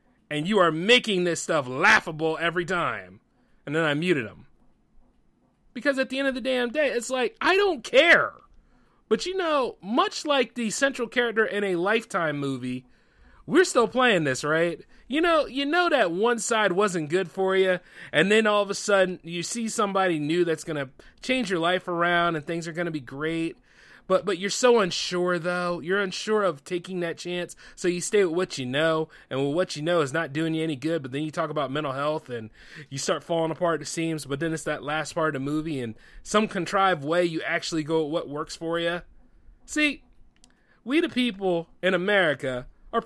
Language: English